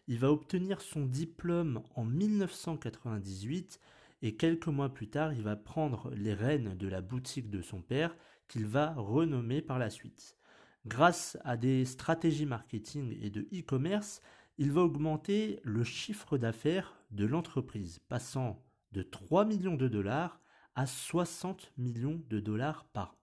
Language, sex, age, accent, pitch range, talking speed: French, male, 40-59, French, 120-170 Hz, 145 wpm